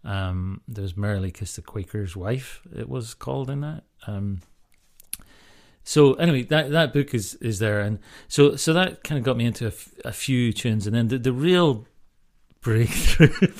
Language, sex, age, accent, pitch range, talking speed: English, male, 40-59, British, 100-125 Hz, 185 wpm